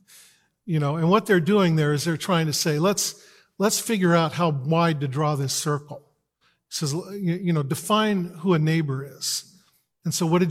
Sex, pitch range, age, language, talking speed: male, 145-175 Hz, 50-69, English, 200 wpm